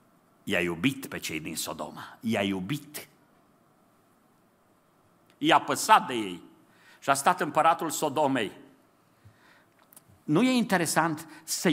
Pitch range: 160-230 Hz